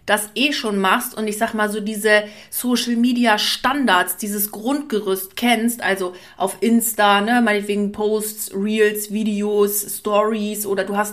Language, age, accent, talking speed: German, 30-49, German, 135 wpm